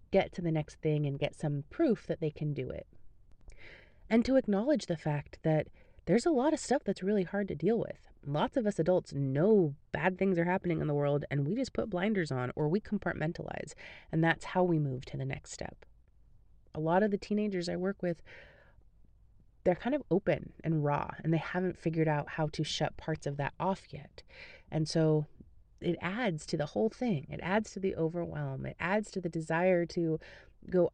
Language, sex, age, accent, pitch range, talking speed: English, female, 30-49, American, 150-195 Hz, 210 wpm